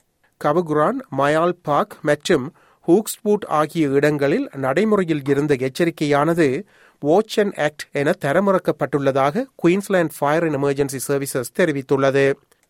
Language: Tamil